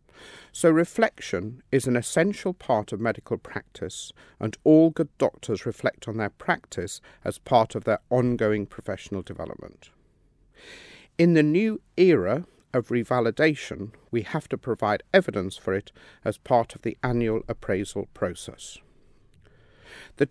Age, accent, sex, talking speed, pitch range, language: 50-69, British, male, 135 wpm, 115-165 Hz, English